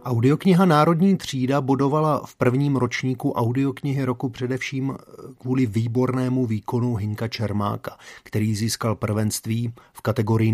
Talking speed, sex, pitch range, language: 115 wpm, male, 115-130 Hz, Slovak